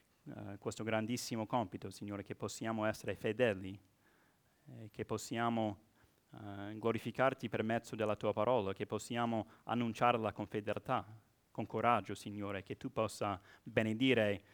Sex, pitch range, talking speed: male, 100-115 Hz, 120 wpm